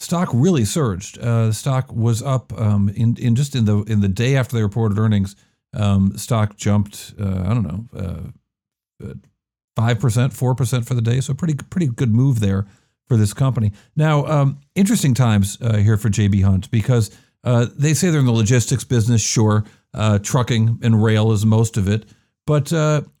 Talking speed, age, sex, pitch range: 185 wpm, 50-69, male, 105-135 Hz